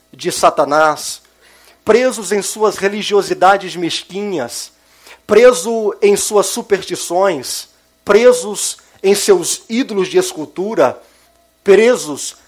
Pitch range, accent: 185-250 Hz, Brazilian